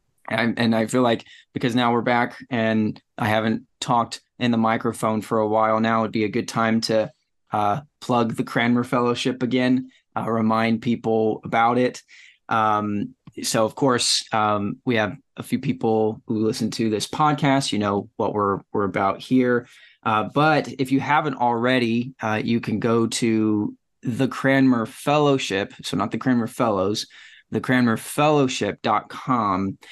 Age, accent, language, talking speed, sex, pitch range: 20-39, American, English, 155 wpm, male, 110-130 Hz